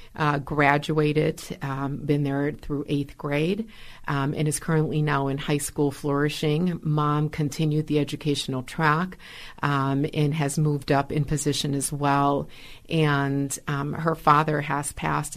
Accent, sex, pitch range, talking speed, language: American, female, 140-155 Hz, 145 wpm, English